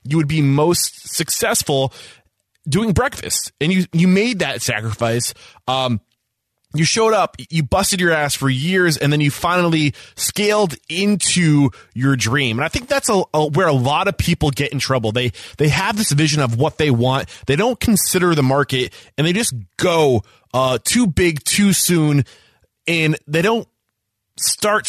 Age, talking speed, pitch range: 20-39, 175 wpm, 125-170 Hz